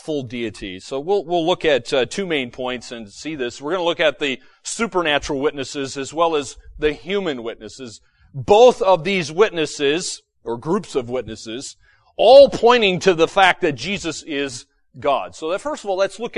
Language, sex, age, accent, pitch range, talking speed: English, male, 40-59, American, 145-230 Hz, 185 wpm